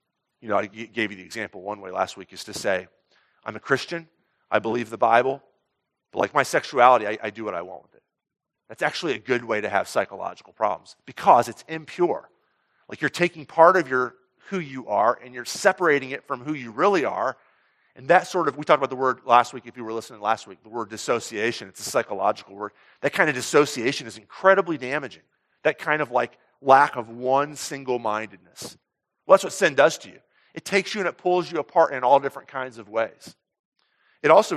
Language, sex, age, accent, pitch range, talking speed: English, male, 40-59, American, 115-155 Hz, 215 wpm